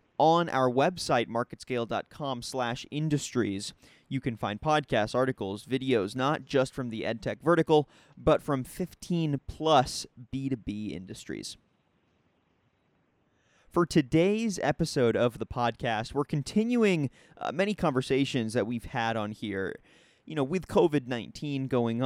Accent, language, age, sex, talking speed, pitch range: American, English, 30-49, male, 120 wpm, 115-150 Hz